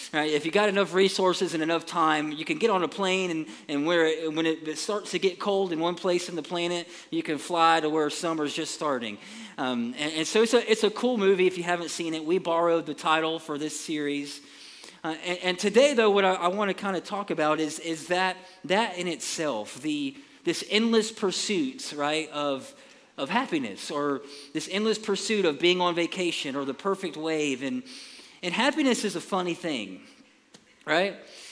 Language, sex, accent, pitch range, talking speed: English, male, American, 160-205 Hz, 205 wpm